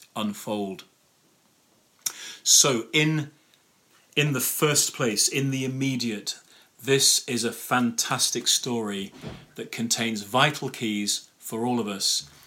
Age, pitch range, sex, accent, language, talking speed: 30-49, 115-140 Hz, male, British, English, 110 wpm